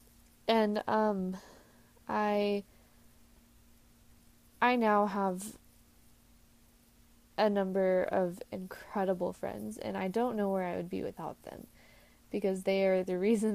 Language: English